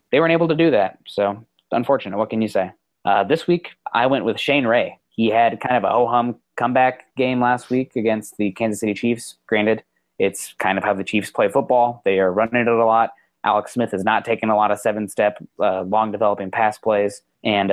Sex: male